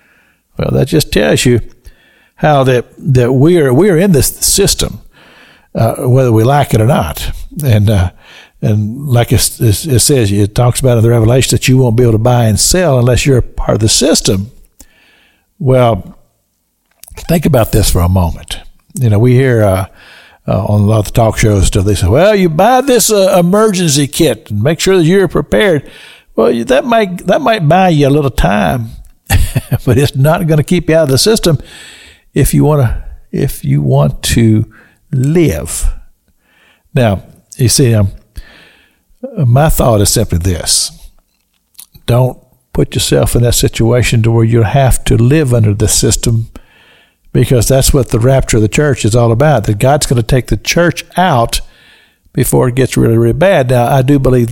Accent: American